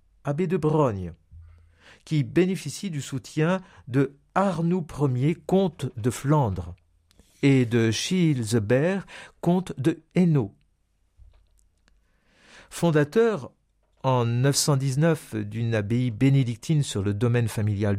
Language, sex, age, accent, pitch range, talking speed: French, male, 60-79, French, 100-155 Hz, 95 wpm